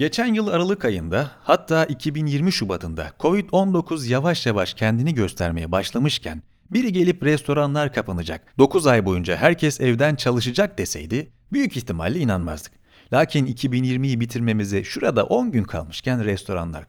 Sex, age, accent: male, 40-59, native